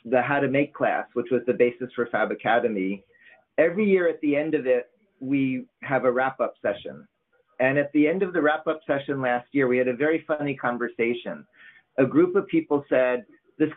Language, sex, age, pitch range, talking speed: English, male, 40-59, 130-175 Hz, 200 wpm